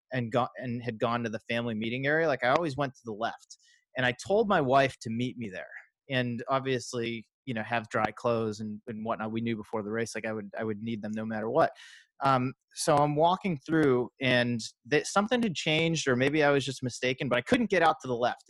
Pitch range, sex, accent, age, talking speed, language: 115-135 Hz, male, American, 30-49, 245 wpm, English